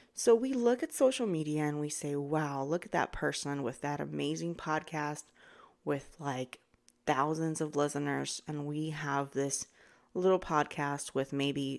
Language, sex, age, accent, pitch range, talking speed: English, female, 30-49, American, 135-170 Hz, 160 wpm